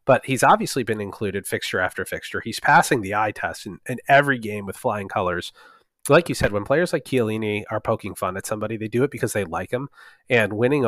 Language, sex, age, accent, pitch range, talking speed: English, male, 30-49, American, 105-135 Hz, 225 wpm